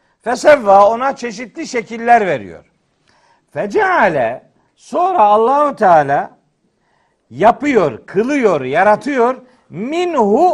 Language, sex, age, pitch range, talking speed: Turkish, male, 60-79, 205-250 Hz, 75 wpm